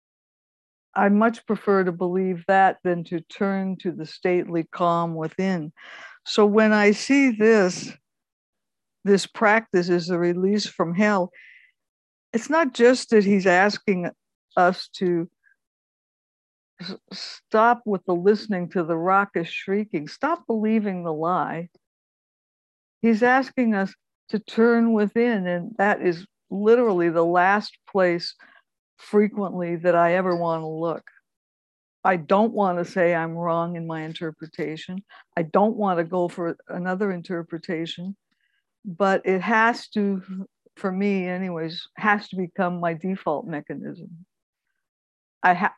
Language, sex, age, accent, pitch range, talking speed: English, female, 60-79, American, 170-210 Hz, 130 wpm